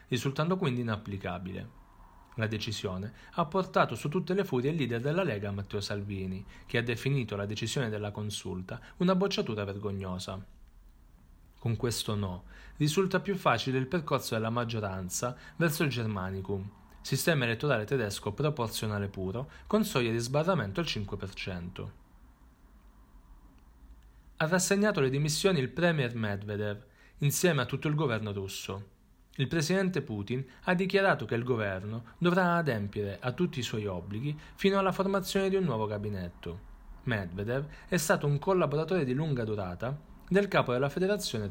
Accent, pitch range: native, 100-155 Hz